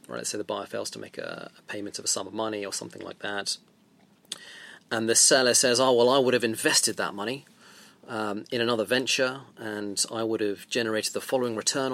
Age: 30-49